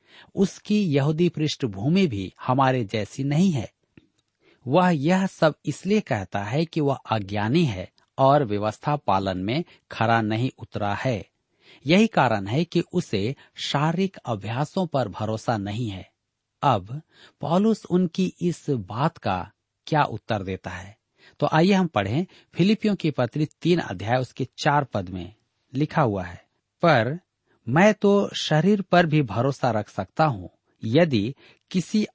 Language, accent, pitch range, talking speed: Hindi, native, 110-170 Hz, 140 wpm